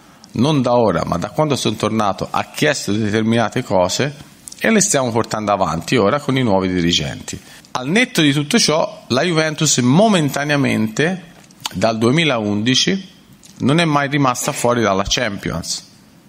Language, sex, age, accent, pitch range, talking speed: Italian, male, 40-59, native, 105-140 Hz, 145 wpm